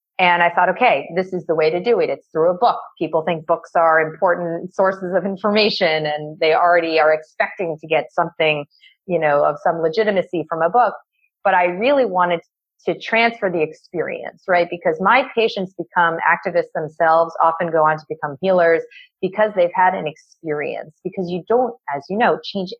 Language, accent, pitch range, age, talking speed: English, American, 165-210 Hz, 30-49, 190 wpm